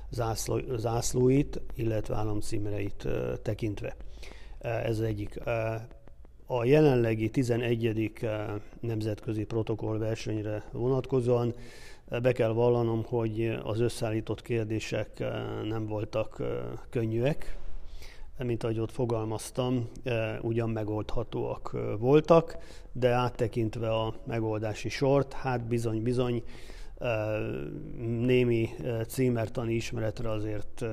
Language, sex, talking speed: Hungarian, male, 80 wpm